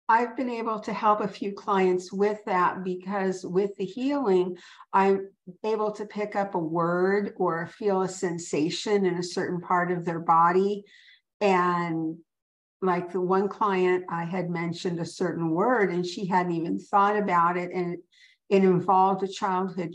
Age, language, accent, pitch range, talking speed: 50-69, English, American, 175-210 Hz, 165 wpm